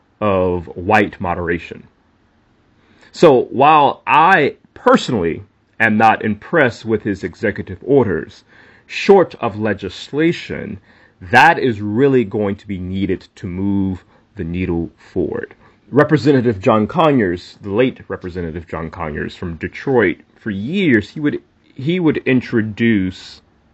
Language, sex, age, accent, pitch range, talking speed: English, male, 30-49, American, 95-120 Hz, 115 wpm